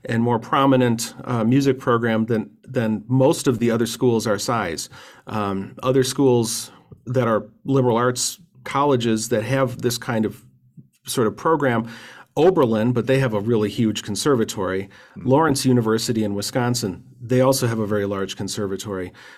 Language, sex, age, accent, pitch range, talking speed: English, male, 40-59, American, 115-140 Hz, 155 wpm